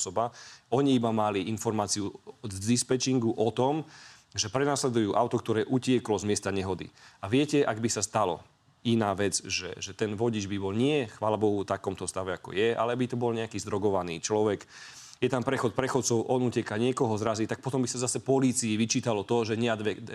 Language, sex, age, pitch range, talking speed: Slovak, male, 30-49, 105-125 Hz, 190 wpm